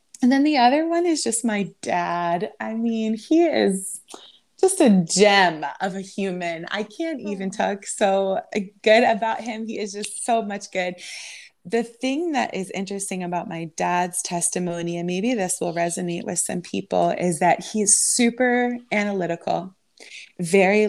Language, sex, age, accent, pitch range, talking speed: English, female, 20-39, American, 175-225 Hz, 160 wpm